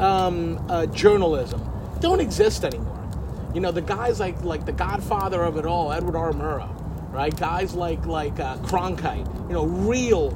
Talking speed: 170 wpm